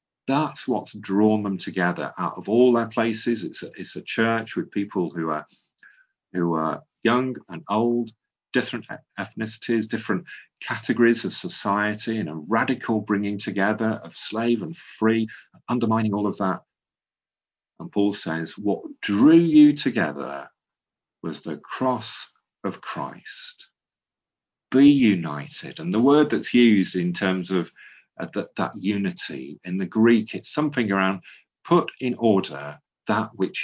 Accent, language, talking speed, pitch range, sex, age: British, English, 140 wpm, 95-125 Hz, male, 40-59